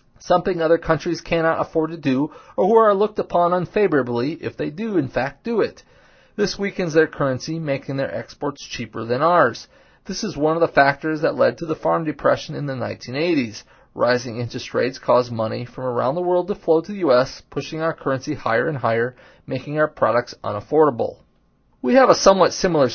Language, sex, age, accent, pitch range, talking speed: English, male, 30-49, American, 125-165 Hz, 195 wpm